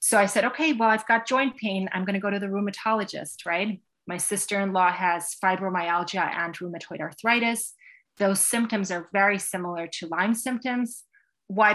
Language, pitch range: English, 185-230 Hz